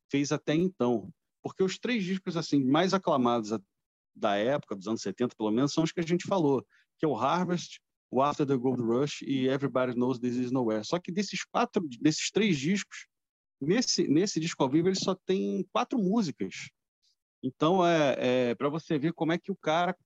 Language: Portuguese